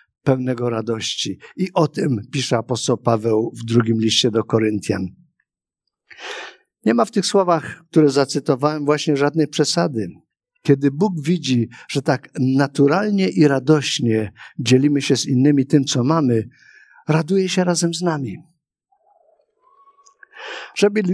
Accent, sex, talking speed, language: native, male, 125 wpm, Polish